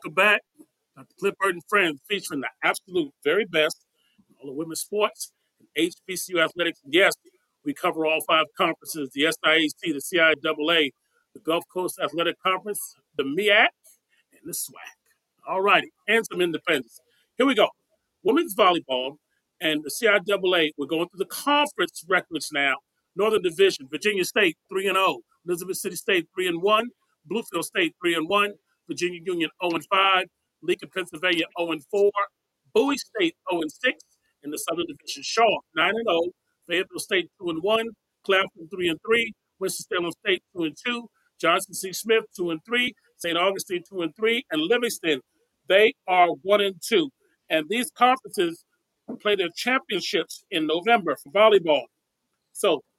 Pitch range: 170-240 Hz